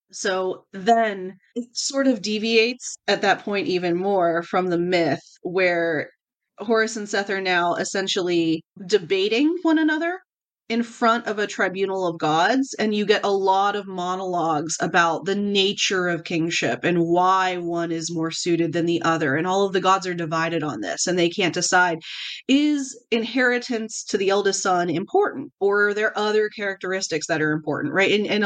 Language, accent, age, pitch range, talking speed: English, American, 30-49, 165-200 Hz, 175 wpm